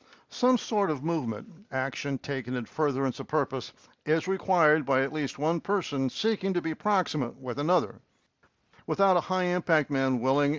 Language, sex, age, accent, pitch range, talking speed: English, male, 60-79, American, 130-170 Hz, 160 wpm